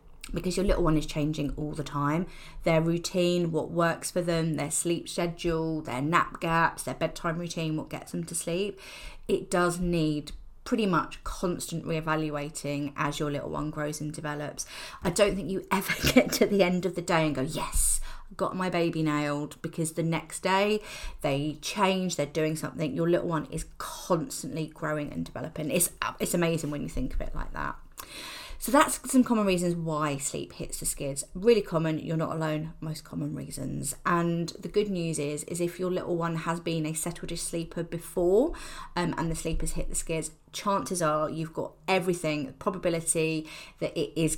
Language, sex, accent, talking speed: English, female, British, 190 wpm